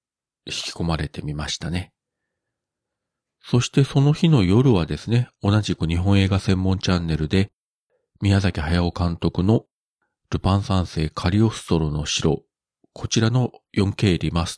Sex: male